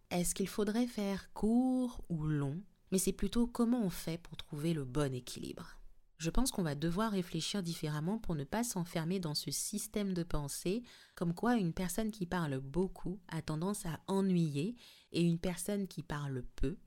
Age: 30-49